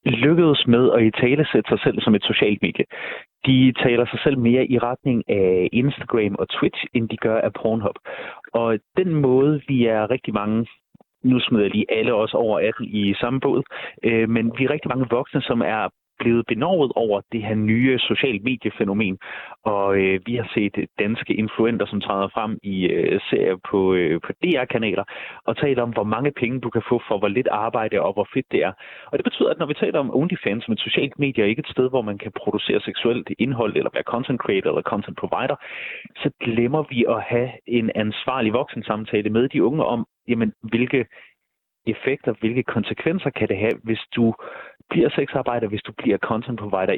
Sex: male